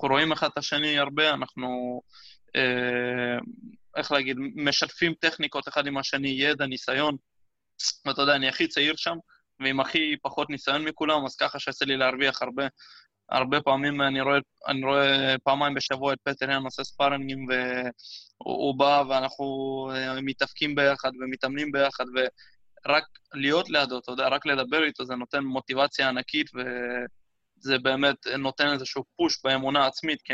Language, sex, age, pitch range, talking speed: Hebrew, male, 20-39, 130-140 Hz, 150 wpm